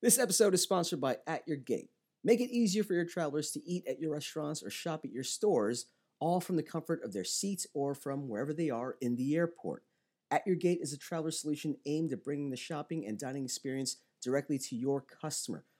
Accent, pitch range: American, 130-165 Hz